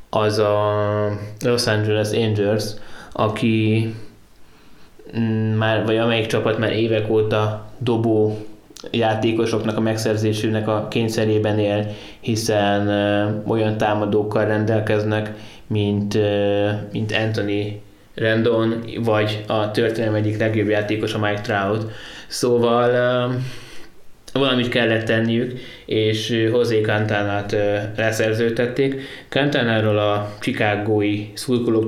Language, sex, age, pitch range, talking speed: Hungarian, male, 20-39, 105-120 Hz, 90 wpm